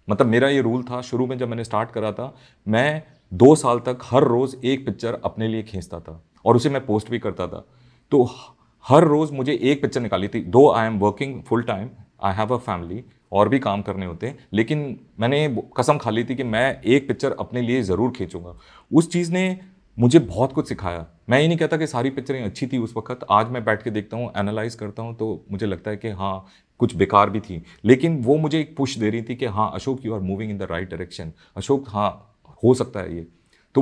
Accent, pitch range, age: native, 100-130 Hz, 30-49